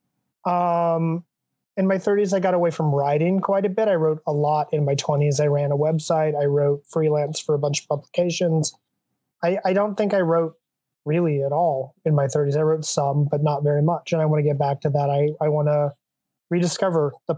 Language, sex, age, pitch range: English, male, 20-39, 145-165 Hz